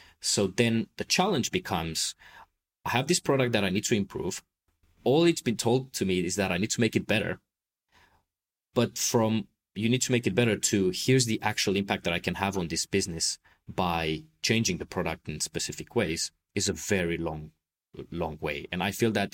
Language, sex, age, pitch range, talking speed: English, male, 30-49, 90-120 Hz, 200 wpm